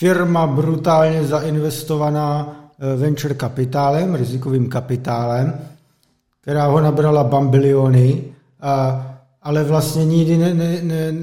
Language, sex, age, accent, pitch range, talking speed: Czech, male, 50-69, native, 140-165 Hz, 90 wpm